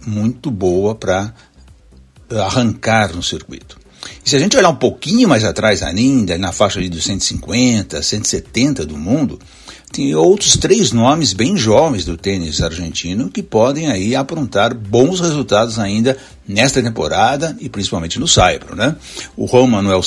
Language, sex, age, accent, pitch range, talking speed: Portuguese, male, 60-79, Brazilian, 95-120 Hz, 145 wpm